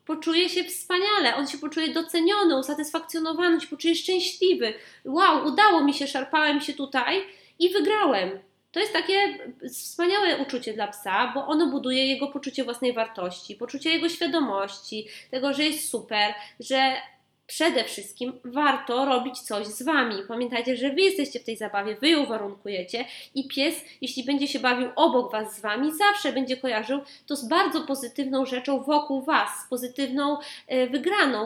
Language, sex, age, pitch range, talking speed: Polish, female, 20-39, 245-305 Hz, 155 wpm